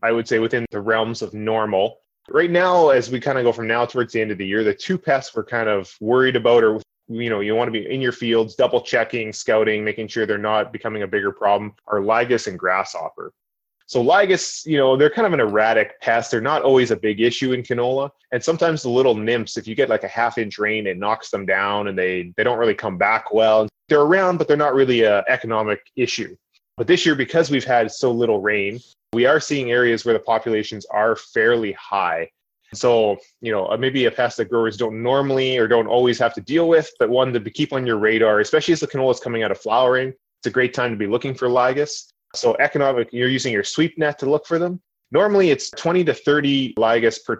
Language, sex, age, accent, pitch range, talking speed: English, male, 20-39, American, 110-140 Hz, 235 wpm